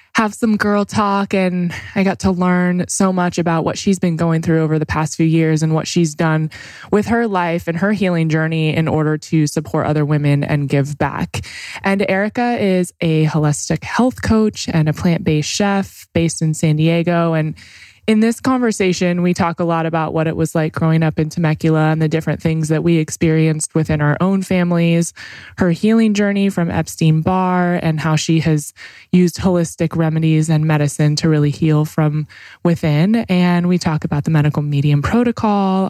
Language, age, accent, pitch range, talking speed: English, 20-39, American, 155-185 Hz, 185 wpm